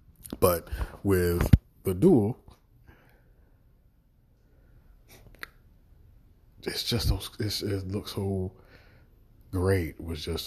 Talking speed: 80 wpm